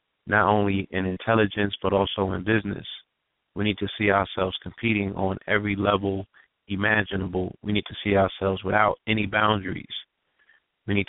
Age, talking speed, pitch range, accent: 30-49, 150 wpm, 95-110 Hz, American